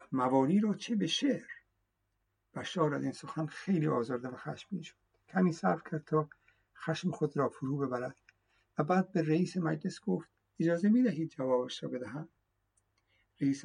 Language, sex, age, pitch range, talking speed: Persian, male, 60-79, 125-160 Hz, 160 wpm